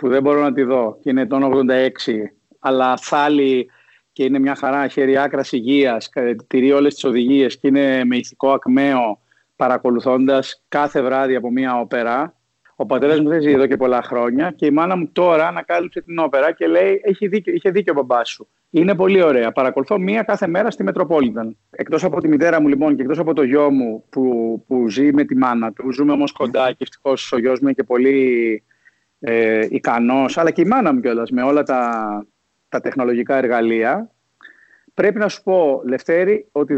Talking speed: 185 wpm